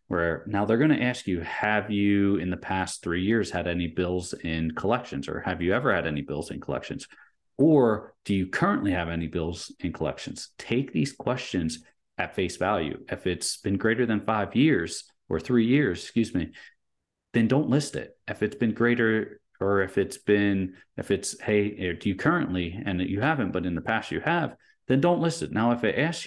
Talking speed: 205 wpm